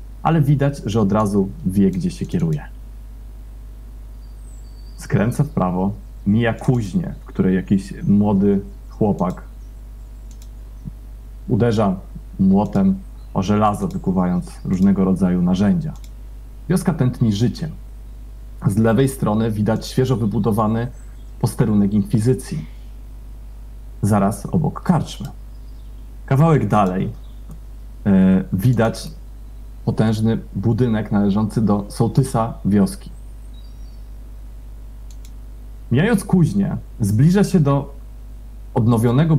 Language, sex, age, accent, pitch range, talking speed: Polish, male, 40-59, native, 110-125 Hz, 85 wpm